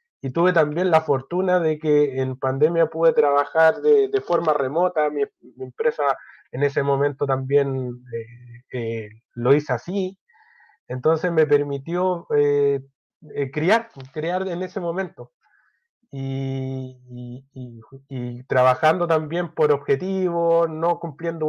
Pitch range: 135-180 Hz